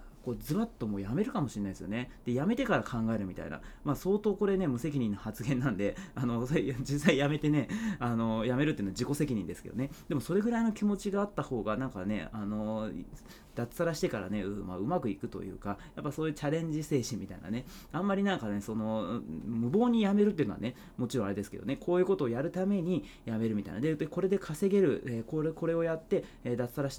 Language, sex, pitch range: Japanese, male, 105-165 Hz